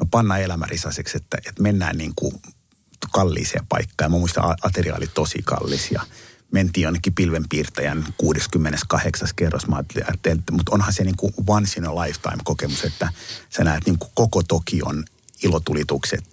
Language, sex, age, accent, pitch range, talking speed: Finnish, male, 50-69, native, 85-105 Hz, 130 wpm